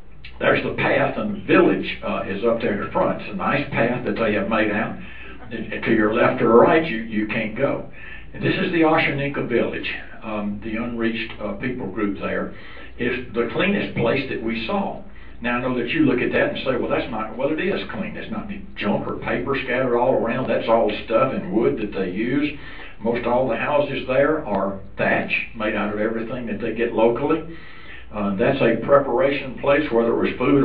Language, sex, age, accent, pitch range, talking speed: English, male, 60-79, American, 110-140 Hz, 215 wpm